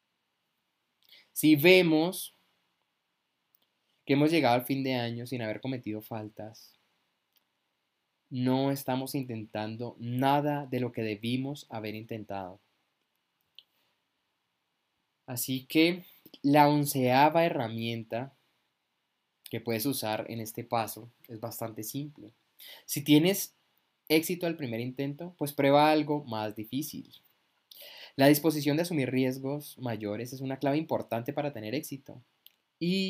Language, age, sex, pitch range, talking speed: Spanish, 20-39, male, 120-150 Hz, 110 wpm